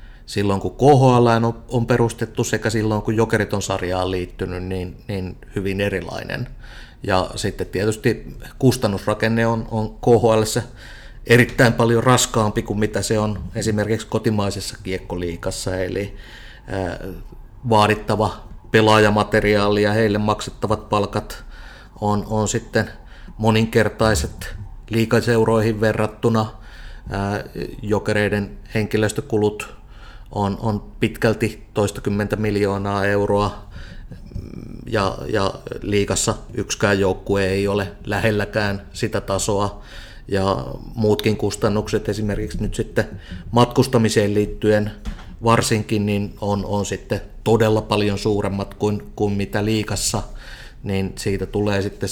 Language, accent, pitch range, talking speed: Finnish, native, 100-115 Hz, 95 wpm